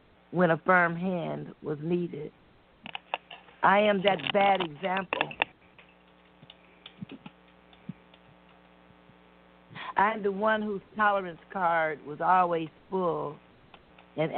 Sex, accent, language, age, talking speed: female, American, English, 50-69, 90 wpm